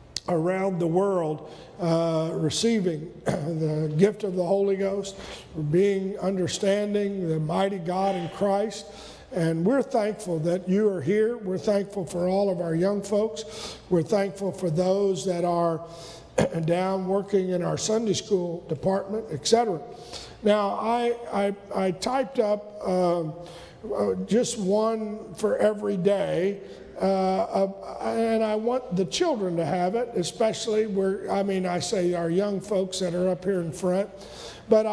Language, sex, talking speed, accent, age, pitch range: English, male, 145 wpm, American, 50-69, 190-235 Hz